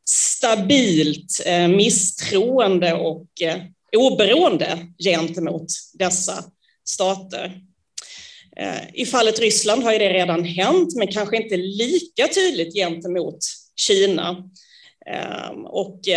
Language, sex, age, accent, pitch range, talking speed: English, female, 30-49, Swedish, 175-220 Hz, 85 wpm